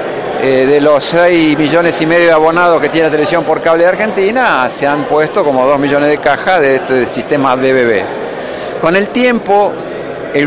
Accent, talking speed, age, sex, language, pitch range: Argentinian, 190 wpm, 50-69, male, Spanish, 145-190 Hz